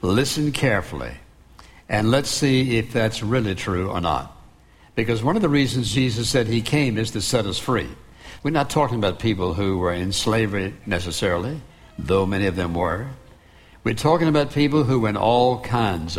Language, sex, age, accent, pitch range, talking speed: English, male, 60-79, American, 105-140 Hz, 180 wpm